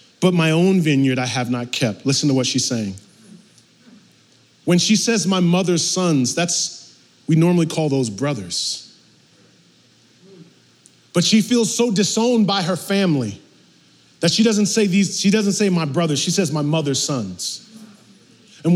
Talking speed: 155 wpm